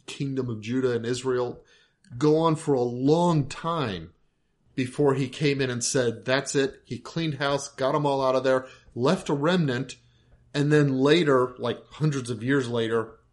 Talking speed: 175 wpm